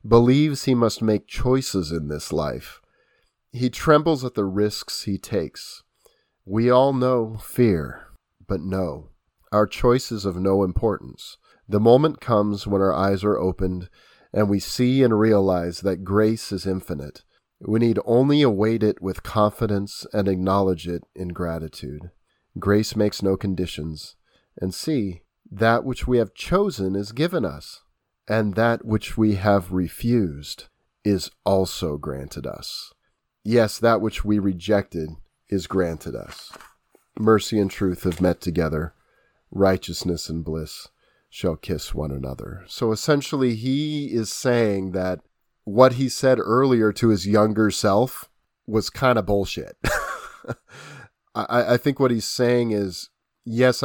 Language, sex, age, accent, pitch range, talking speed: English, male, 40-59, American, 95-115 Hz, 140 wpm